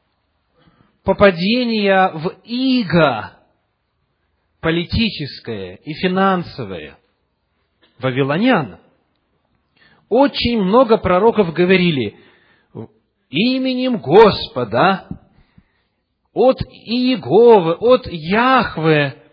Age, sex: 40-59, male